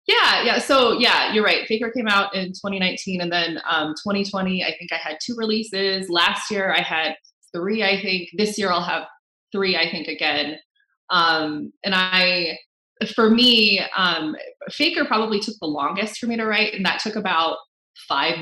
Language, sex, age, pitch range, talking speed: English, female, 20-39, 155-210 Hz, 180 wpm